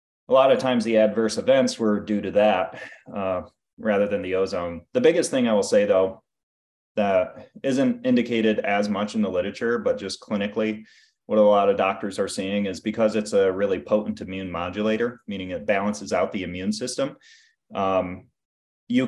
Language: English